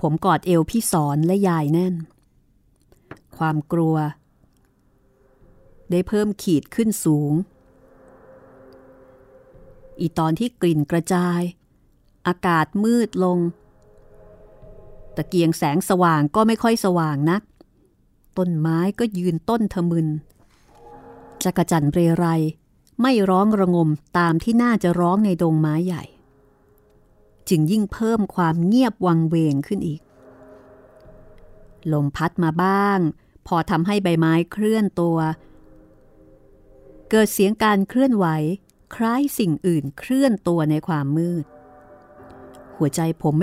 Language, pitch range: Thai, 155-195 Hz